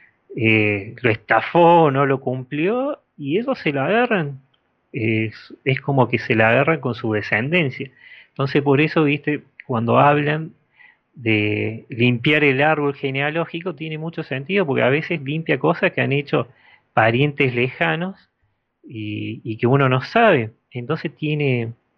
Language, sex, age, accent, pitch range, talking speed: Spanish, male, 30-49, Argentinian, 120-165 Hz, 145 wpm